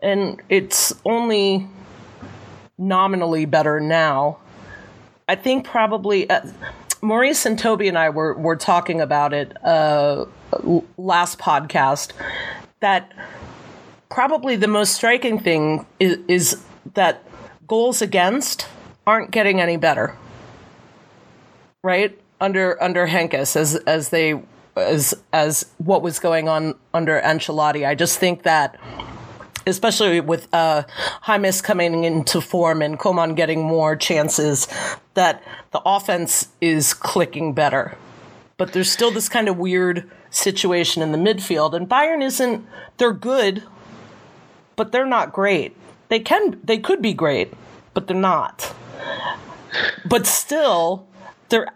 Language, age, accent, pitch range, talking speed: English, 30-49, American, 160-215 Hz, 125 wpm